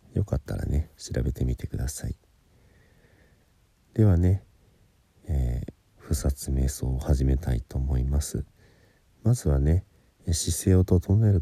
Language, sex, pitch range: Japanese, male, 70-95 Hz